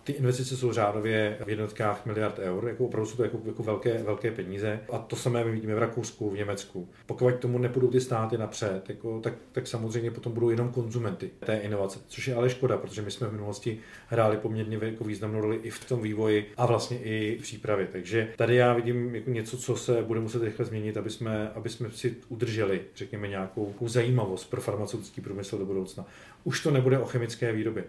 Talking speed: 215 wpm